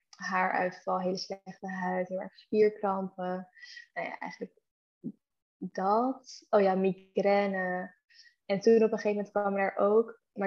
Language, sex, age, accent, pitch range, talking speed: Dutch, female, 10-29, Dutch, 190-215 Hz, 140 wpm